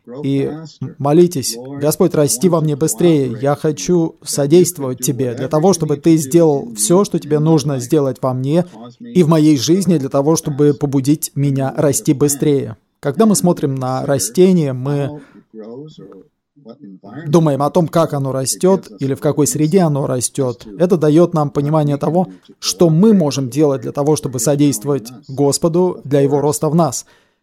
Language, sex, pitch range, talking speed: Russian, male, 135-160 Hz, 155 wpm